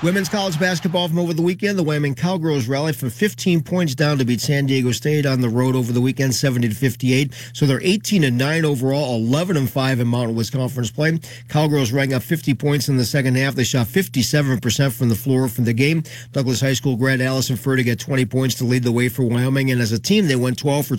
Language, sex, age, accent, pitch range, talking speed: English, male, 40-59, American, 125-145 Hz, 245 wpm